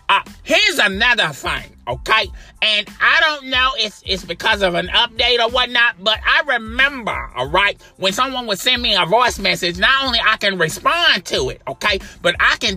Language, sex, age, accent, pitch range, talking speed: English, male, 30-49, American, 200-265 Hz, 195 wpm